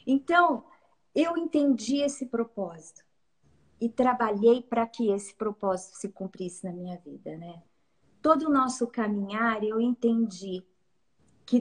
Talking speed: 125 wpm